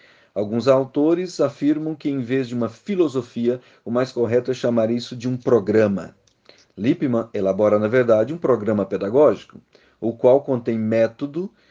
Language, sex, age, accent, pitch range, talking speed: Portuguese, male, 40-59, Brazilian, 110-145 Hz, 150 wpm